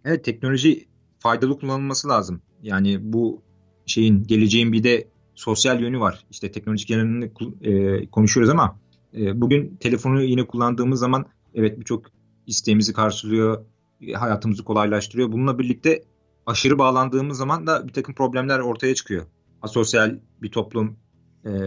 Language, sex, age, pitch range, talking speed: Turkish, male, 40-59, 105-130 Hz, 125 wpm